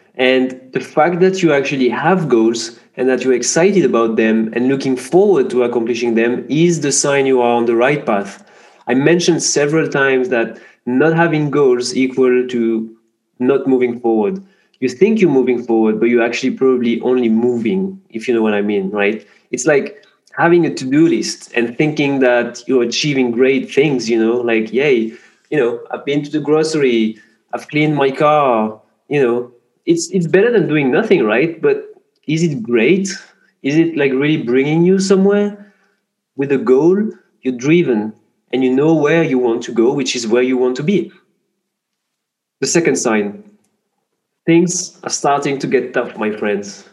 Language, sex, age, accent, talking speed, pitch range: English, male, 20-39, French, 180 wpm, 120-170 Hz